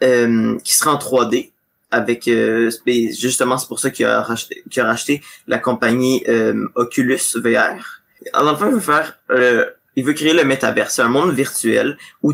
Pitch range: 120-145 Hz